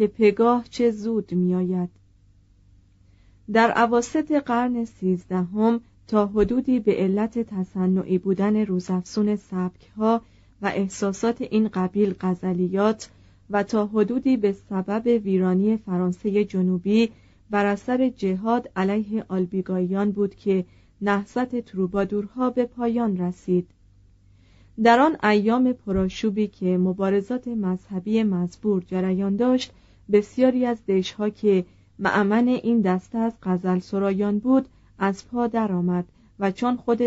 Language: Persian